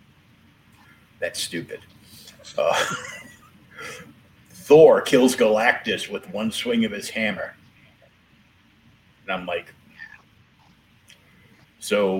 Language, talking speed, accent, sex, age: English, 80 wpm, American, male, 50-69